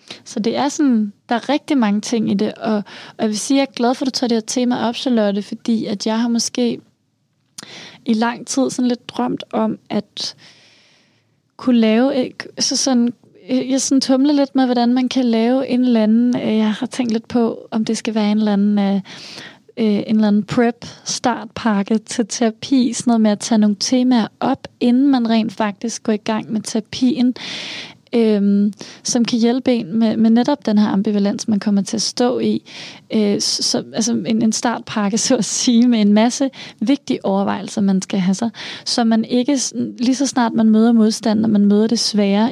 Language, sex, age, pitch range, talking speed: Danish, female, 20-39, 215-245 Hz, 195 wpm